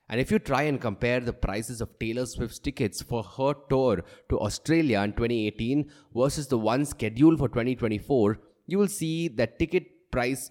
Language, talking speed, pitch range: English, 175 wpm, 110-150 Hz